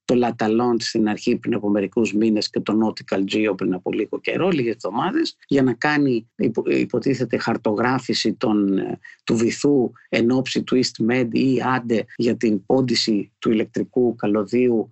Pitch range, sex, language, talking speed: 115-170 Hz, male, Greek, 155 wpm